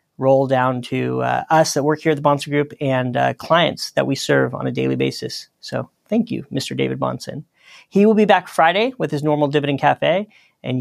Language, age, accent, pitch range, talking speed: English, 40-59, American, 140-175 Hz, 215 wpm